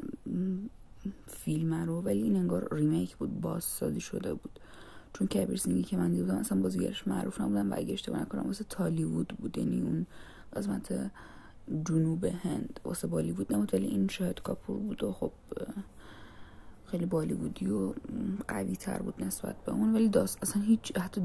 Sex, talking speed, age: female, 155 wpm, 30-49